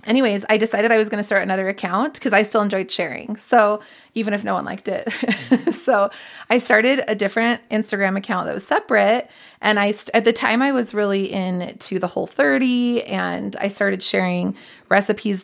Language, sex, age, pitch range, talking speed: English, female, 30-49, 185-230 Hz, 200 wpm